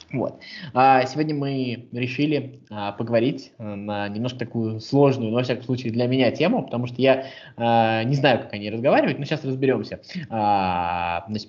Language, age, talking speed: Russian, 20-39, 150 wpm